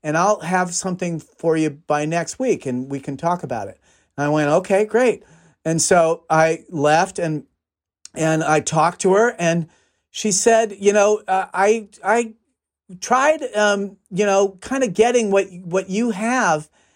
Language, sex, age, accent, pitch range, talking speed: English, male, 40-59, American, 155-210 Hz, 175 wpm